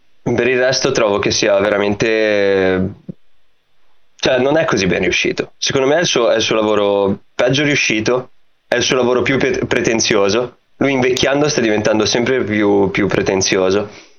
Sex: male